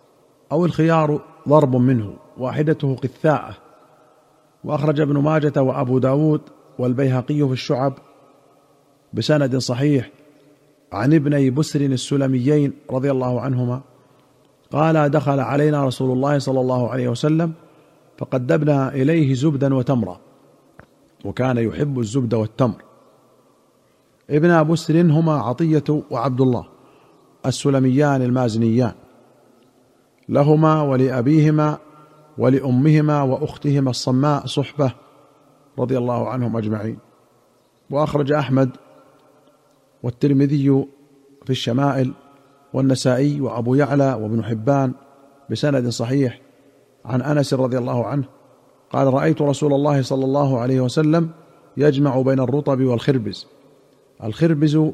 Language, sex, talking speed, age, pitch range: Arabic, male, 95 wpm, 40-59, 130-150 Hz